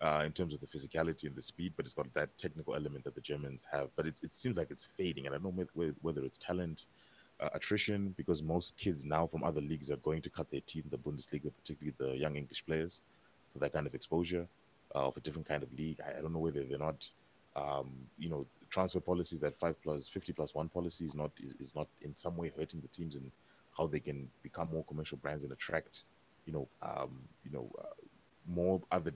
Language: English